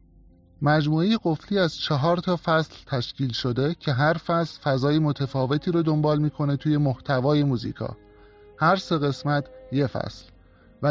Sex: male